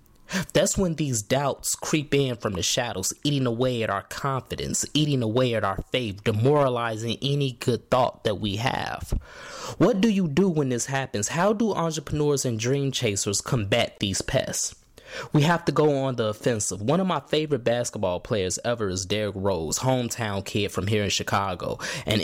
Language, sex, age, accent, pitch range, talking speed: English, male, 20-39, American, 115-155 Hz, 180 wpm